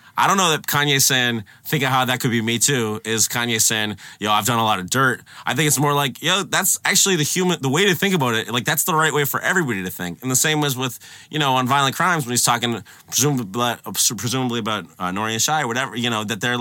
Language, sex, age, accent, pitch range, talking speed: English, male, 30-49, American, 115-155 Hz, 270 wpm